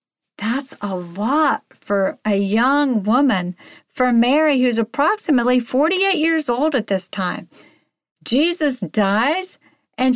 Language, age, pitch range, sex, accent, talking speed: English, 50-69, 195-280 Hz, female, American, 120 wpm